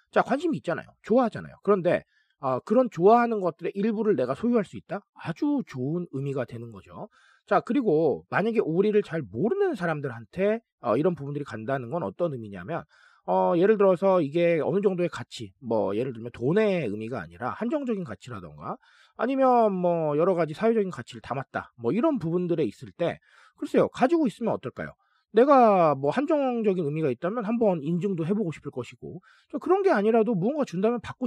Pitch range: 145-225 Hz